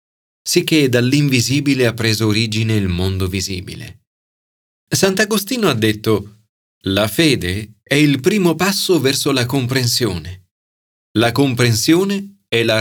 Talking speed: 115 wpm